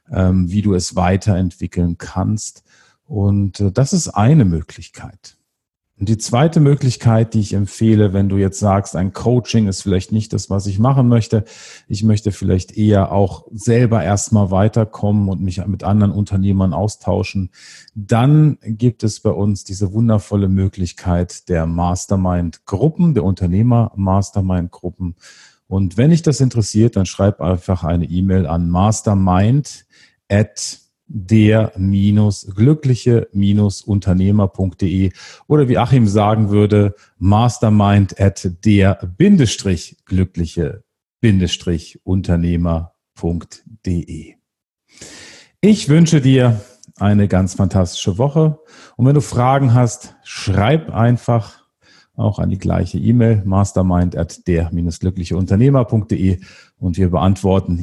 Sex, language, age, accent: male, German, 40-59, German